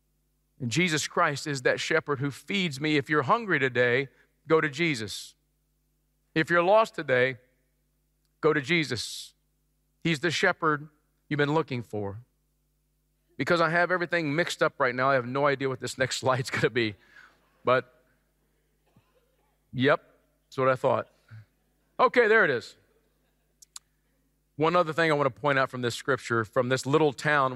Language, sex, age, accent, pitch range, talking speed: English, male, 40-59, American, 130-185 Hz, 155 wpm